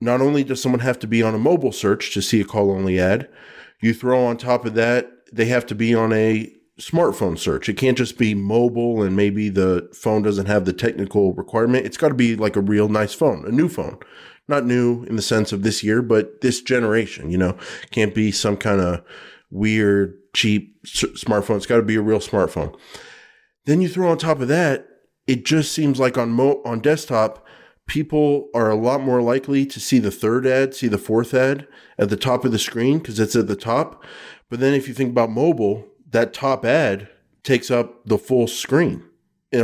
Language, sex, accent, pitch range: English, male, American, 105-130 Hz